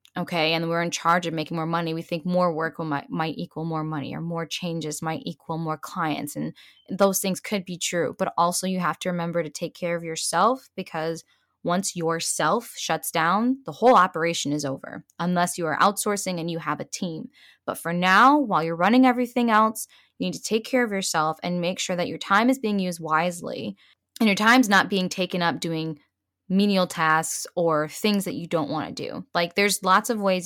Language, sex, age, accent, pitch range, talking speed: English, female, 10-29, American, 160-200 Hz, 215 wpm